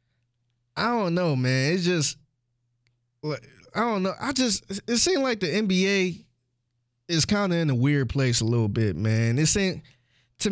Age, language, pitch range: 20-39, English, 120-170 Hz